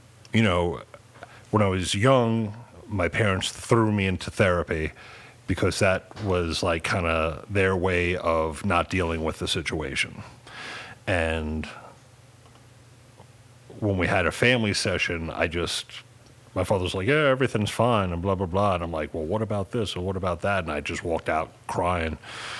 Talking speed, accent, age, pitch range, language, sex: 170 wpm, American, 40-59, 85-115 Hz, English, male